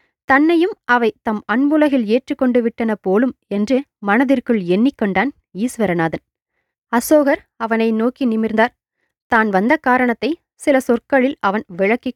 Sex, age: female, 20-39